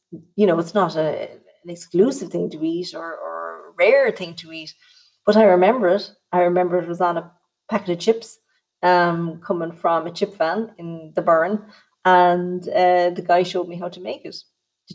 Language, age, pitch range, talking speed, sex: English, 30-49, 170-195 Hz, 195 wpm, female